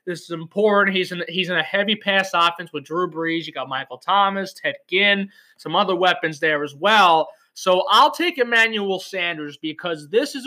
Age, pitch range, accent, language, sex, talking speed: 20-39, 165-205 Hz, American, English, male, 195 wpm